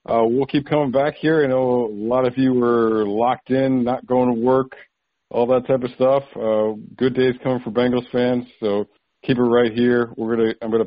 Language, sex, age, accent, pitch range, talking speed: English, male, 50-69, American, 110-130 Hz, 220 wpm